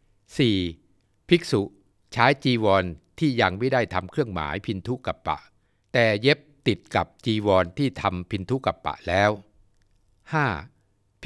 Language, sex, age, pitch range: Thai, male, 60-79, 90-125 Hz